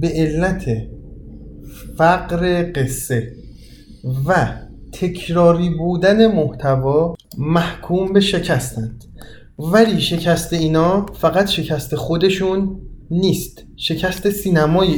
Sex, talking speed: male, 80 wpm